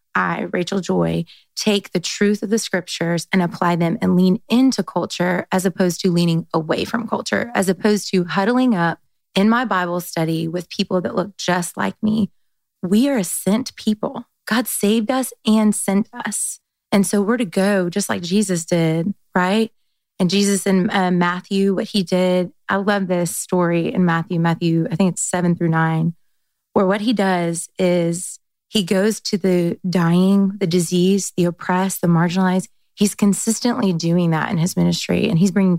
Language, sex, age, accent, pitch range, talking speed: English, female, 20-39, American, 180-215 Hz, 180 wpm